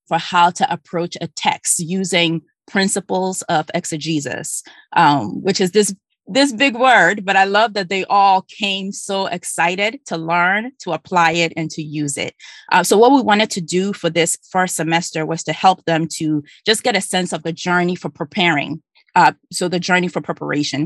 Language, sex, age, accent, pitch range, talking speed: English, female, 20-39, American, 165-195 Hz, 190 wpm